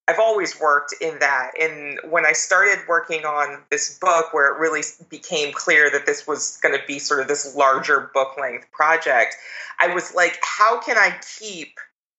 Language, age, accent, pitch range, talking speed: English, 30-49, American, 150-195 Hz, 185 wpm